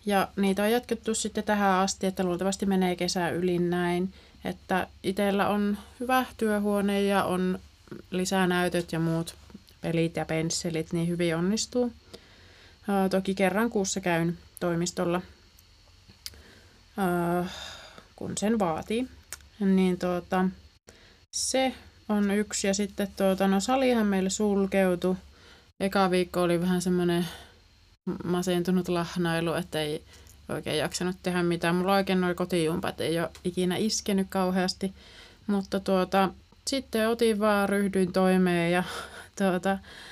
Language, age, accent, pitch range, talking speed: Finnish, 30-49, native, 170-200 Hz, 120 wpm